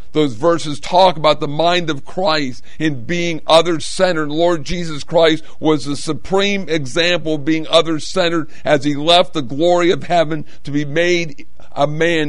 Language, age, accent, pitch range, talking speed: English, 50-69, American, 150-175 Hz, 160 wpm